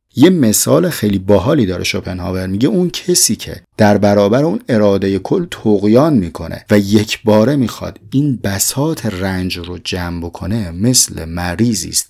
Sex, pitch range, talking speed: male, 95-125 Hz, 140 wpm